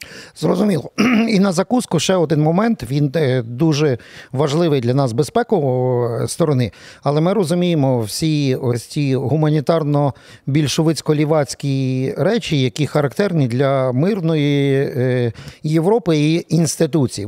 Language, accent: Ukrainian, native